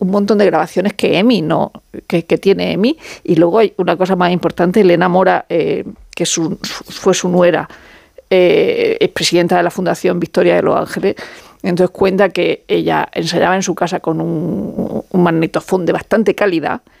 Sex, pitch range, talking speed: female, 185-225 Hz, 180 wpm